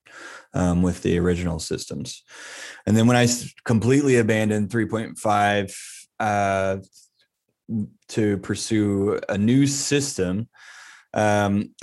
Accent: American